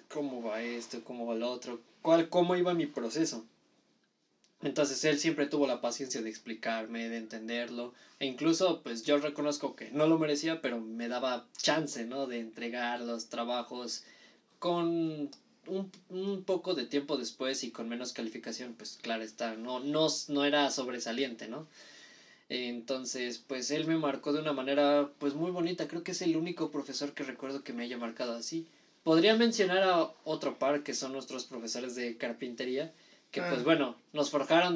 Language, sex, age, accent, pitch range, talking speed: Spanish, male, 20-39, Mexican, 120-150 Hz, 175 wpm